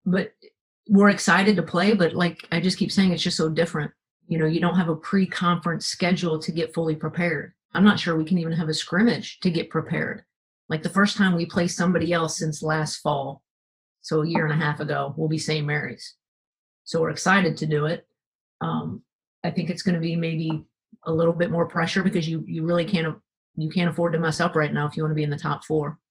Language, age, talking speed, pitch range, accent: English, 40-59, 235 wpm, 155-185 Hz, American